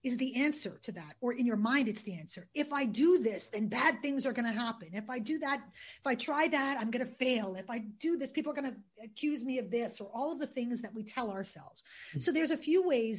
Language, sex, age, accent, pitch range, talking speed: English, female, 40-59, American, 210-275 Hz, 275 wpm